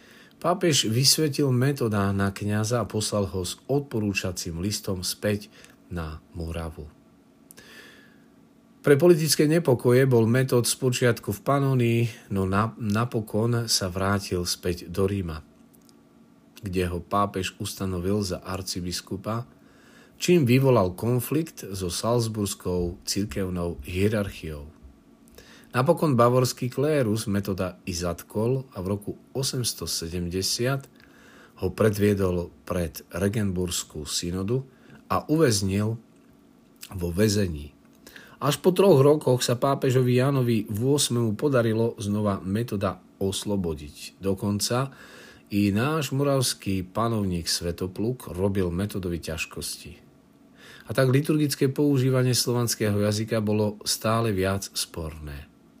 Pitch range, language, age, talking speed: 95-125 Hz, Slovak, 40-59, 100 wpm